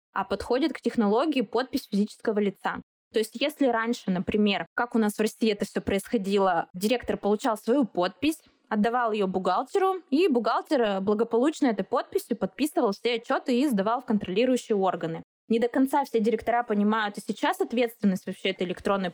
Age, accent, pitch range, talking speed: 20-39, native, 200-245 Hz, 165 wpm